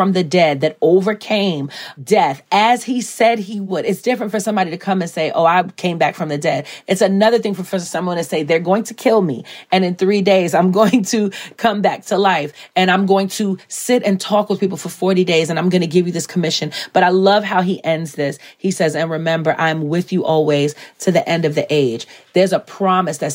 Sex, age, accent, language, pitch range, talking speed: female, 30-49, American, English, 165-200 Hz, 245 wpm